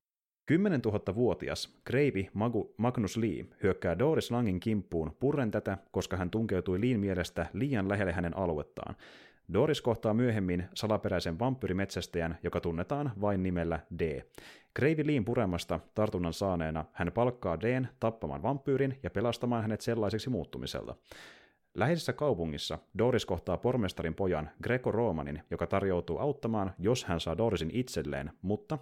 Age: 30-49